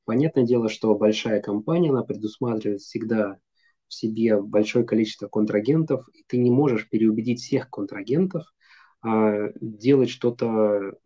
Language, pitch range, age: Russian, 110-135 Hz, 20-39